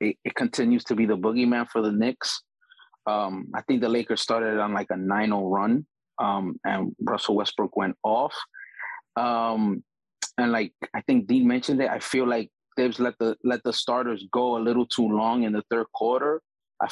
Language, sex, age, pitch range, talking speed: English, male, 20-39, 110-130 Hz, 195 wpm